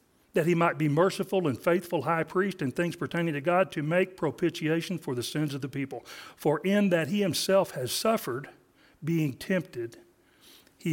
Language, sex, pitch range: English, male, 140-175 Hz